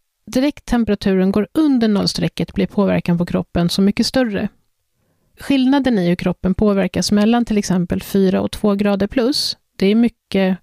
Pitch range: 185-240 Hz